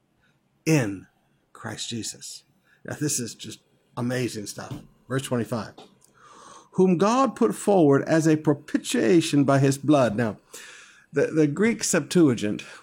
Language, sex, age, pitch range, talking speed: English, male, 60-79, 120-160 Hz, 120 wpm